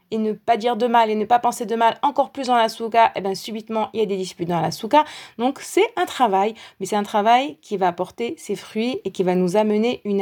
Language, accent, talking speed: French, French, 275 wpm